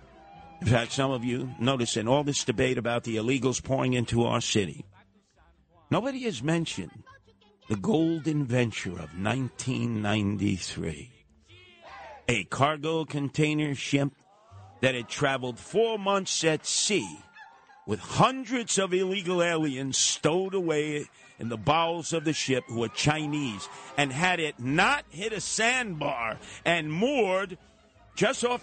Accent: American